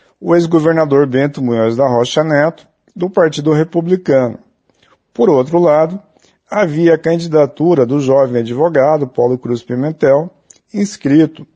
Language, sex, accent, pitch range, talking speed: Portuguese, male, Brazilian, 130-165 Hz, 120 wpm